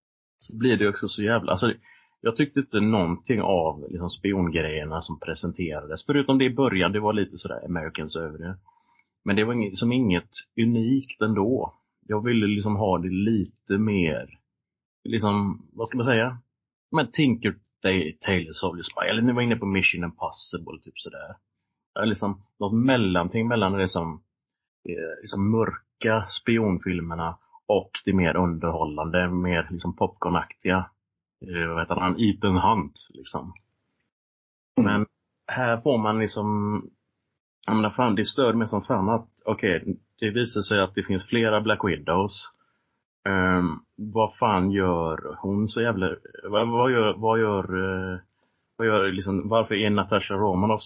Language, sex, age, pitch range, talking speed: Swedish, male, 30-49, 90-110 Hz, 155 wpm